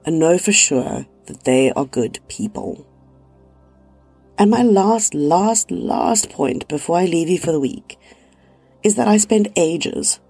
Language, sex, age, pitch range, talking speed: English, female, 30-49, 130-190 Hz, 155 wpm